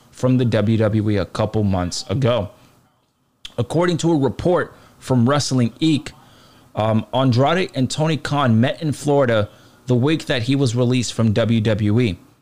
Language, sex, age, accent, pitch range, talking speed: English, male, 20-39, American, 110-135 Hz, 145 wpm